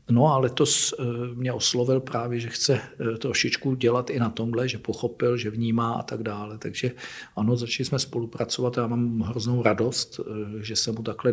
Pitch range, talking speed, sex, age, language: 110-130 Hz, 180 wpm, male, 50-69, Czech